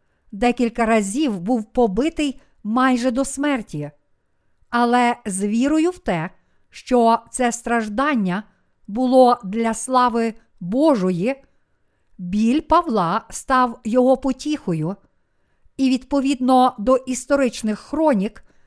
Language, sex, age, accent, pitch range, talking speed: Ukrainian, female, 50-69, native, 210-260 Hz, 95 wpm